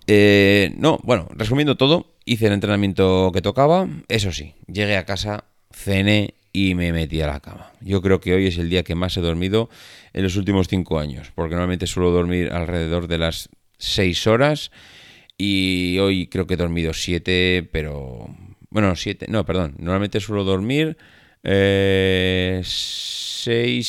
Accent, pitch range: Spanish, 85-105 Hz